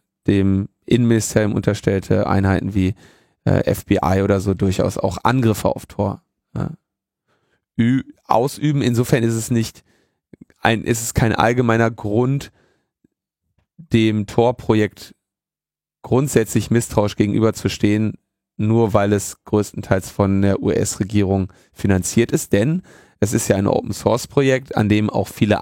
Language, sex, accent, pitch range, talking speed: German, male, German, 100-115 Hz, 120 wpm